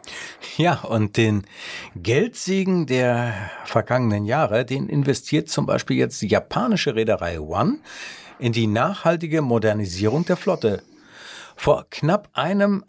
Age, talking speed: 60-79, 115 wpm